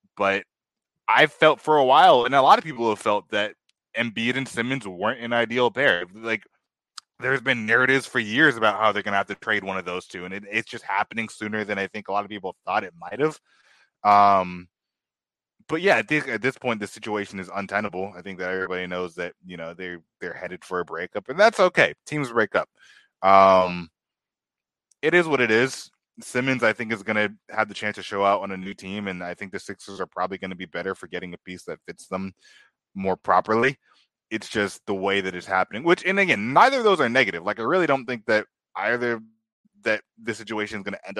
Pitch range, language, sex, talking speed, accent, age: 95-115 Hz, English, male, 225 wpm, American, 20-39